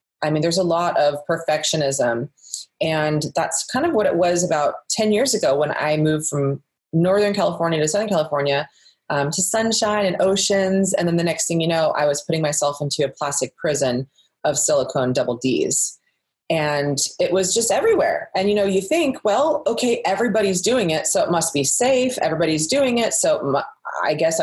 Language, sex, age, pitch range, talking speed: English, female, 30-49, 150-200 Hz, 190 wpm